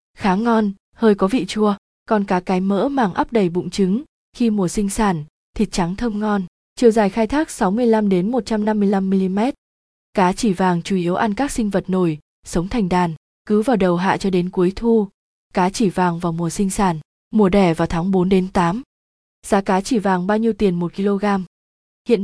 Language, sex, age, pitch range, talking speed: Vietnamese, female, 20-39, 185-225 Hz, 195 wpm